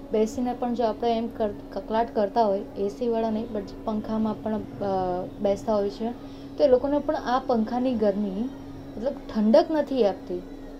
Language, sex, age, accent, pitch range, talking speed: Gujarati, female, 20-39, native, 215-255 Hz, 115 wpm